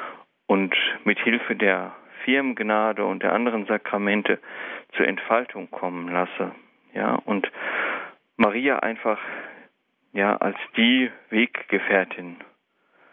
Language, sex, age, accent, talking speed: German, male, 40-59, German, 95 wpm